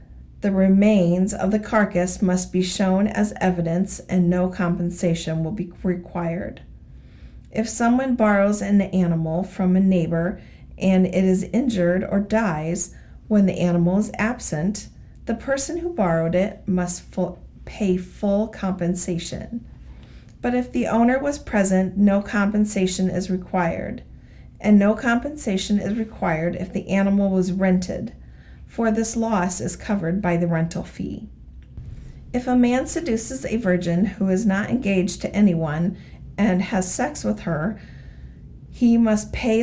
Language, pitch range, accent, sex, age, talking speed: English, 180-215 Hz, American, female, 40-59, 140 wpm